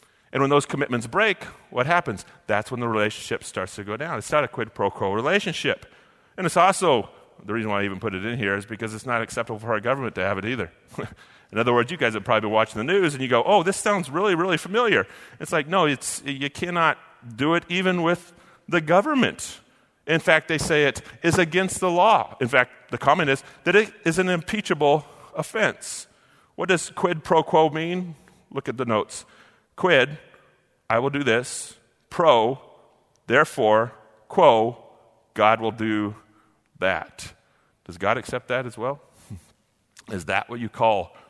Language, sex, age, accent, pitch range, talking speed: English, male, 30-49, American, 115-160 Hz, 190 wpm